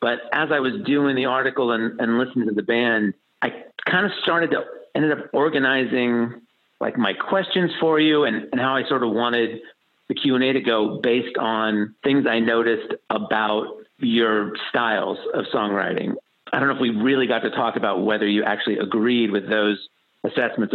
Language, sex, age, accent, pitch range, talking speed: English, male, 40-59, American, 110-130 Hz, 185 wpm